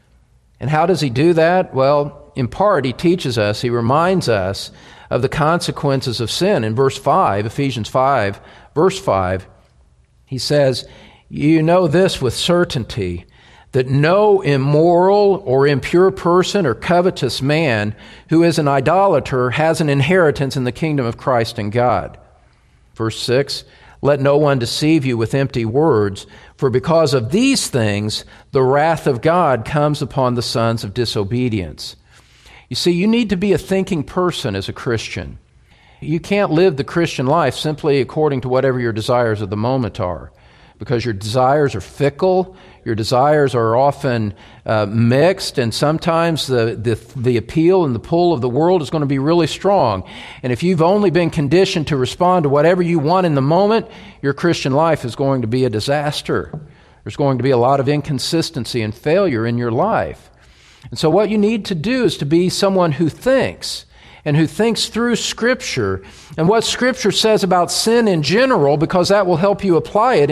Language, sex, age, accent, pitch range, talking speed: English, male, 50-69, American, 120-175 Hz, 180 wpm